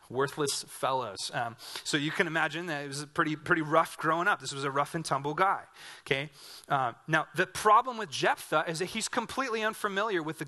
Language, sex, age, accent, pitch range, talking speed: English, male, 30-49, American, 140-195 Hz, 210 wpm